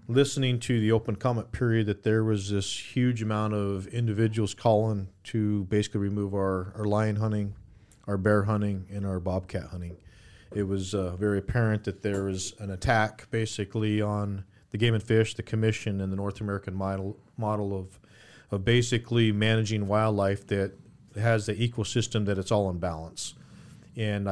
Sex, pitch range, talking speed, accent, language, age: male, 100-115 Hz, 170 wpm, American, English, 40-59